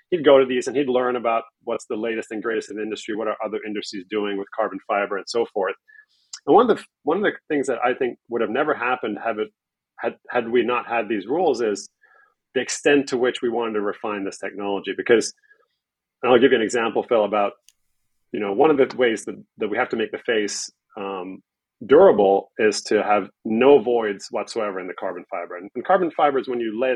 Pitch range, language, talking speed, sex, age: 105-150 Hz, English, 230 wpm, male, 30-49